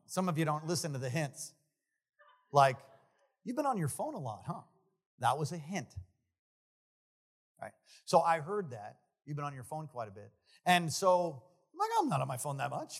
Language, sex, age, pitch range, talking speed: English, male, 40-59, 145-225 Hz, 210 wpm